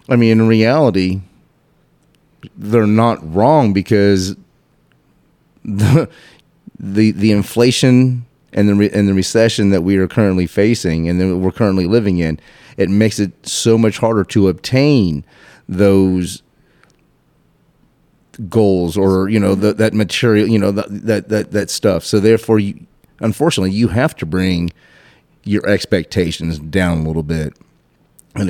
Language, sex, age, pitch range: English, male, 30-49, 95-115 Hz